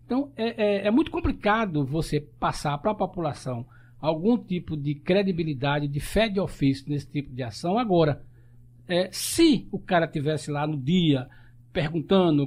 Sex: male